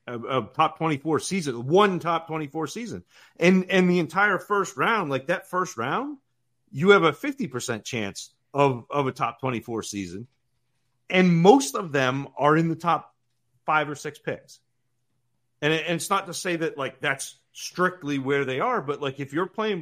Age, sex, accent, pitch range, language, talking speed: 40-59, male, American, 125-160 Hz, English, 180 wpm